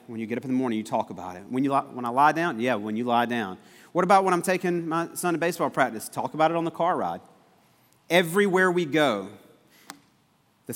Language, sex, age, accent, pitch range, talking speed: English, male, 40-59, American, 135-185 Hz, 235 wpm